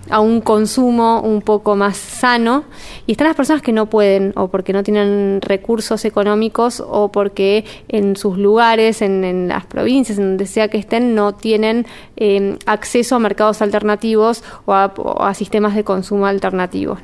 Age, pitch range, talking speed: 20-39, 200-225 Hz, 175 wpm